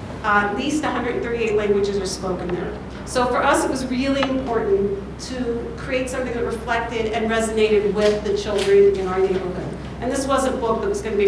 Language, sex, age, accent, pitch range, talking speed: English, female, 50-69, American, 200-235 Hz, 195 wpm